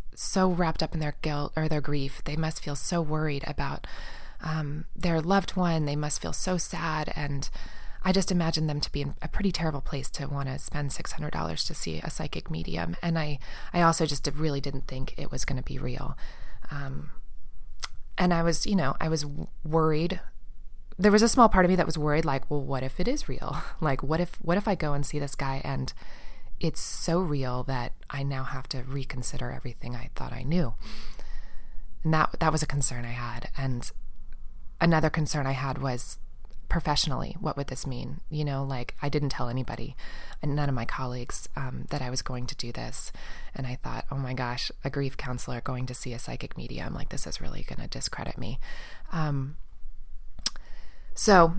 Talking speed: 205 wpm